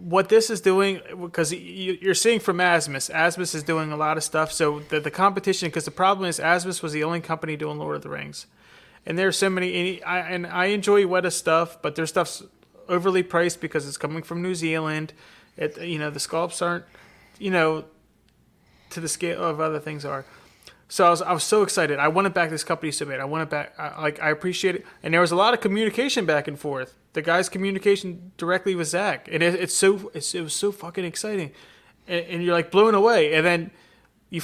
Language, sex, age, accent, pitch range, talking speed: English, male, 30-49, American, 160-195 Hz, 230 wpm